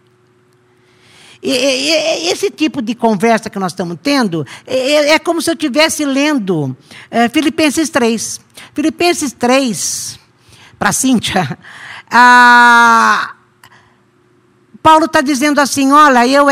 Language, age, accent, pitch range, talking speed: Portuguese, 50-69, Brazilian, 205-290 Hz, 100 wpm